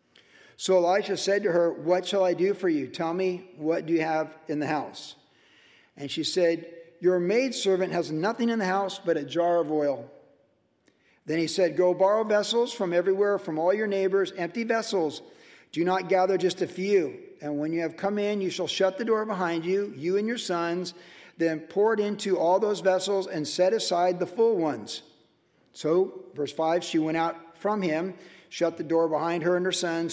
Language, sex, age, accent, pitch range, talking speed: English, male, 50-69, American, 165-200 Hz, 200 wpm